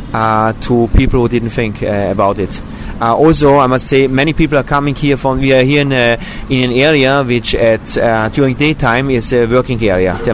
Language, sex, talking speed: English, male, 220 wpm